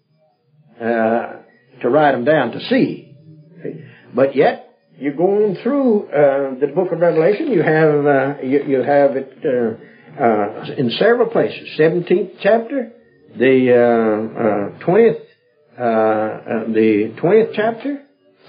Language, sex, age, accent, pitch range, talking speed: English, male, 60-79, American, 130-210 Hz, 135 wpm